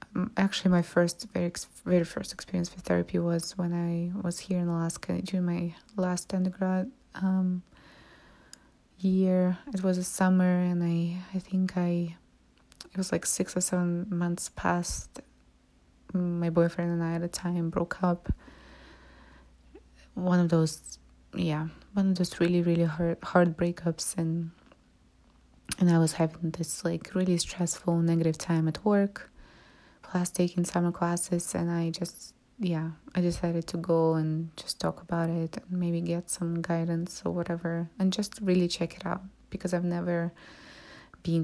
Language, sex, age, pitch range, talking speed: English, female, 20-39, 170-185 Hz, 155 wpm